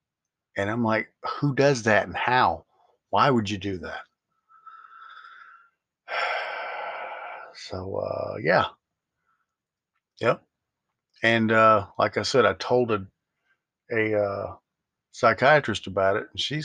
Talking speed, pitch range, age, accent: 115 wpm, 100-115 Hz, 40-59, American